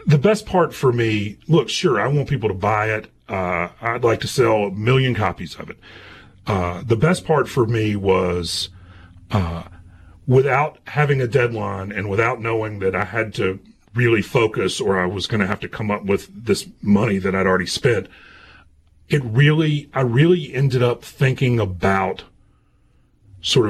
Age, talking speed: 40-59, 175 wpm